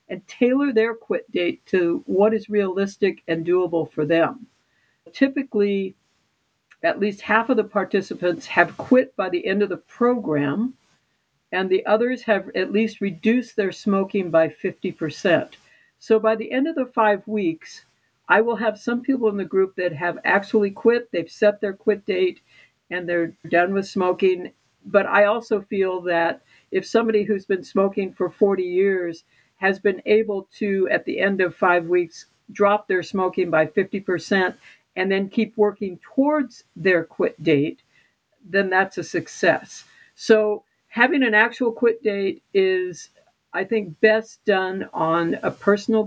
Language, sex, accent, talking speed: English, female, American, 160 wpm